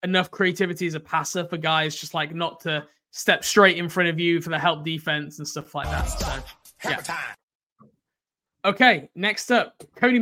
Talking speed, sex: 180 wpm, male